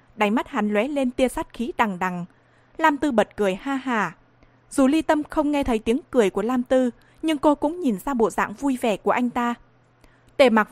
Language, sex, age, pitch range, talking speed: Vietnamese, female, 20-39, 210-275 Hz, 230 wpm